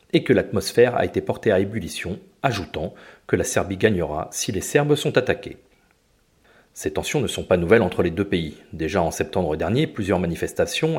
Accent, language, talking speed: French, French, 185 wpm